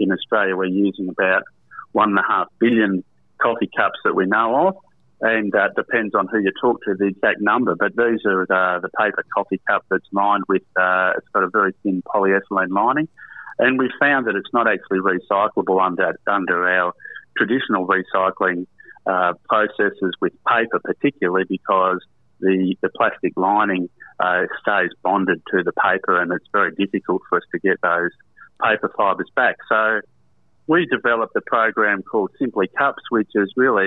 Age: 30-49